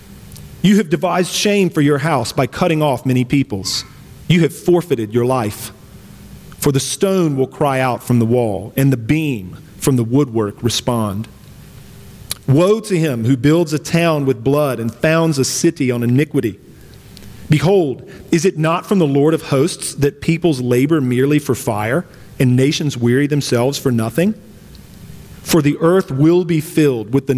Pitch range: 125-160 Hz